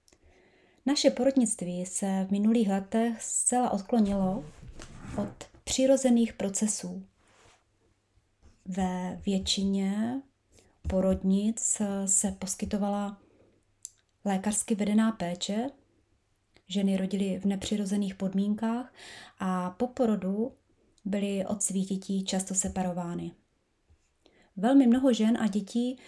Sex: female